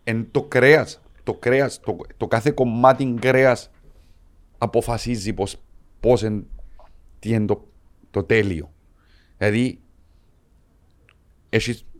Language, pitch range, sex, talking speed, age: Greek, 80-120 Hz, male, 95 wpm, 40-59